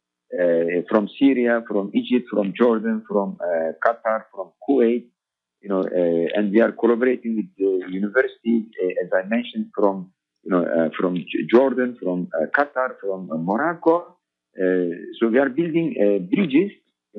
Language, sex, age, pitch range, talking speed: Arabic, male, 50-69, 95-135 Hz, 165 wpm